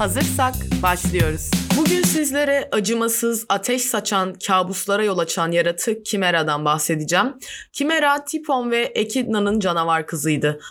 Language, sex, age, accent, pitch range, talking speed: Turkish, female, 20-39, native, 155-210 Hz, 105 wpm